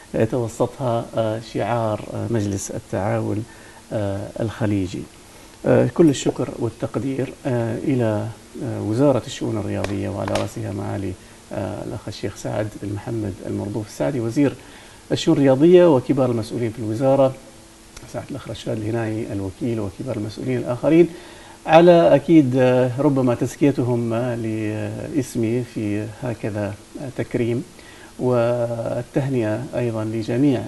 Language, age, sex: Arabic, 50-69, male